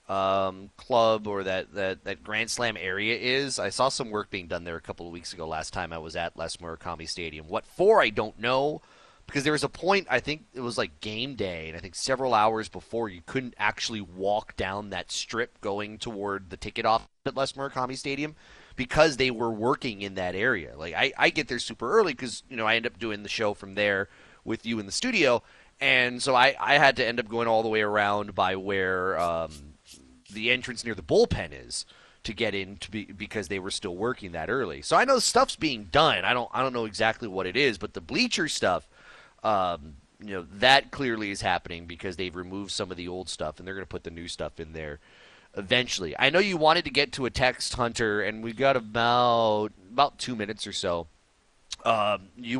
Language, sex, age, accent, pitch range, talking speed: English, male, 30-49, American, 95-125 Hz, 225 wpm